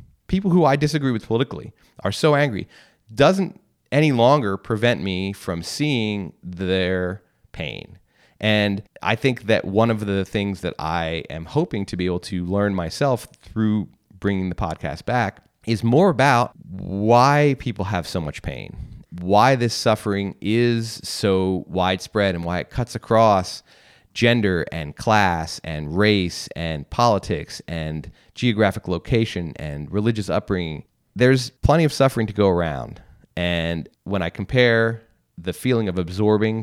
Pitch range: 90-115 Hz